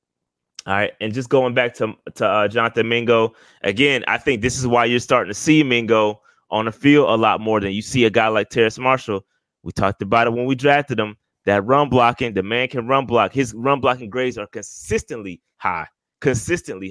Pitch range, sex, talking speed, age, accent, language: 110-135 Hz, male, 215 wpm, 20-39, American, English